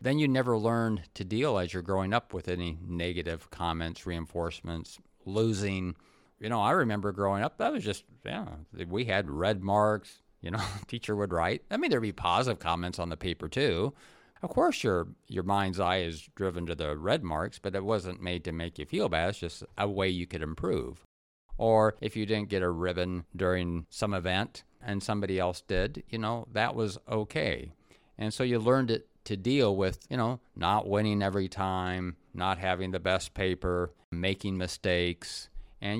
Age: 50-69